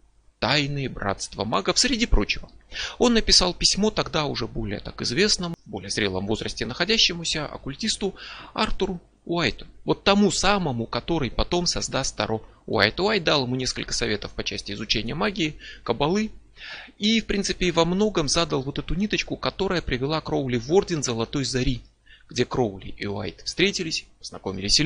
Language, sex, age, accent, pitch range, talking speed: Russian, male, 30-49, native, 115-180 Hz, 145 wpm